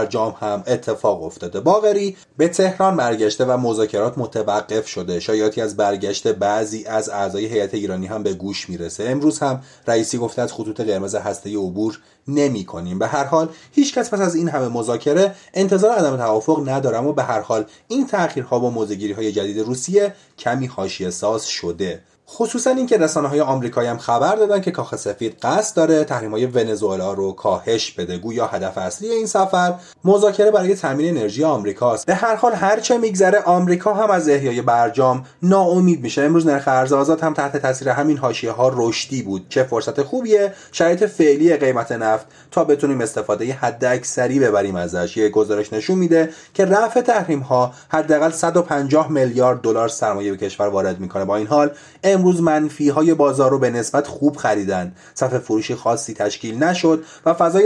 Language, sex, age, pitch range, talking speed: Persian, male, 30-49, 110-180 Hz, 170 wpm